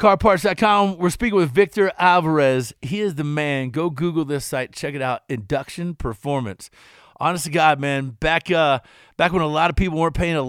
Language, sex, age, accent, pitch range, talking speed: English, male, 40-59, American, 150-195 Hz, 195 wpm